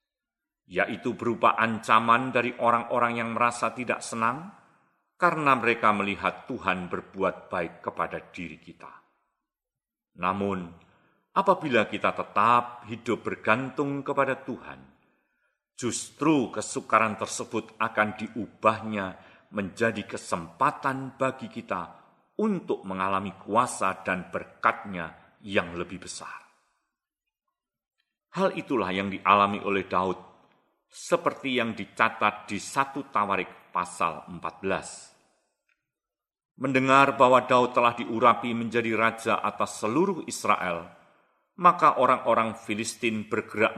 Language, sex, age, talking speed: Indonesian, male, 40-59, 95 wpm